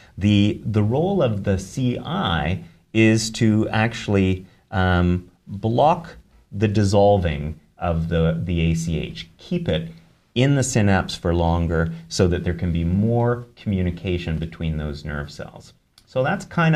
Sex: male